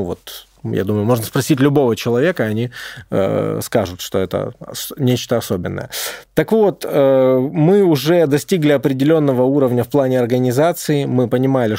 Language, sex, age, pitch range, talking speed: Russian, male, 20-39, 120-150 Hz, 145 wpm